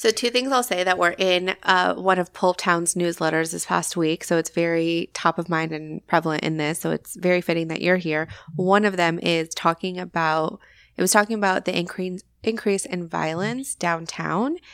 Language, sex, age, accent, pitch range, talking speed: English, female, 20-39, American, 165-205 Hz, 200 wpm